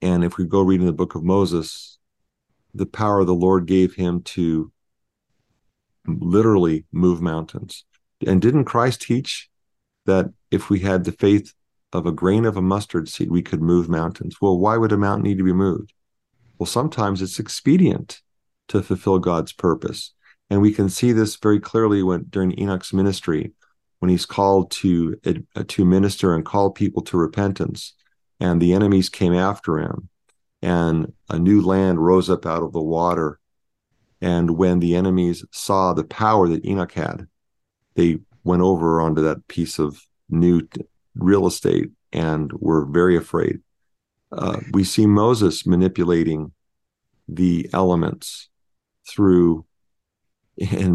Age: 50-69